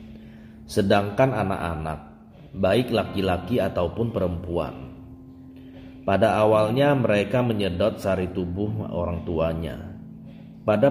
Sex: male